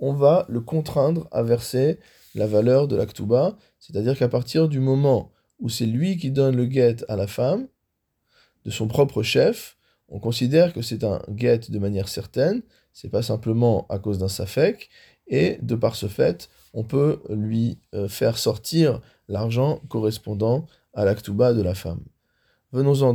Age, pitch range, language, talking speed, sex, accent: 20-39, 115-145 Hz, French, 165 wpm, male, French